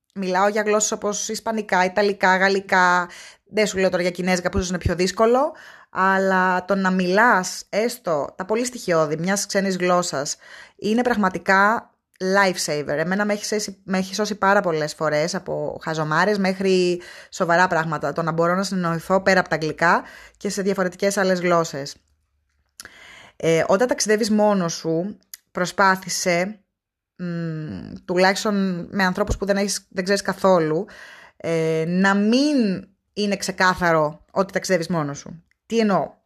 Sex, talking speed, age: female, 140 wpm, 20-39